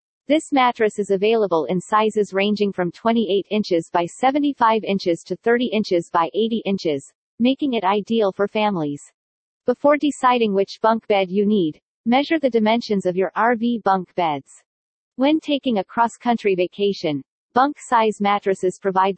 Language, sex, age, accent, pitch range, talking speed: English, female, 40-59, American, 185-240 Hz, 145 wpm